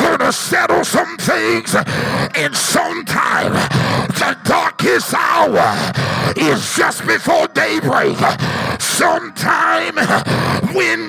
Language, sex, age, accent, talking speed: English, male, 50-69, American, 80 wpm